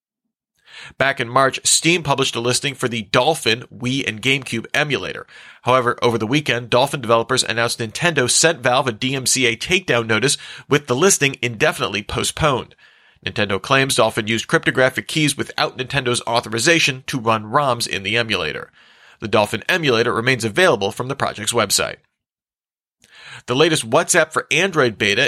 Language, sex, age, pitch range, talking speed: English, male, 40-59, 115-145 Hz, 150 wpm